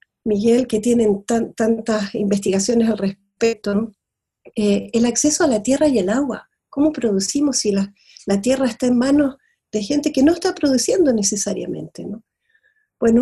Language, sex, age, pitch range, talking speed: Spanish, female, 40-59, 215-285 Hz, 150 wpm